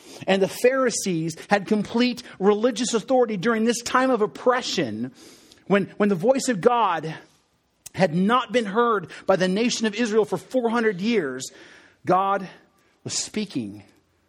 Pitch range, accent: 180-235 Hz, American